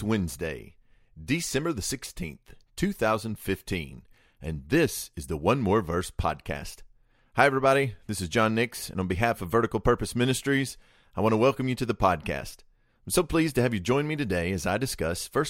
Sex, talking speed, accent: male, 180 wpm, American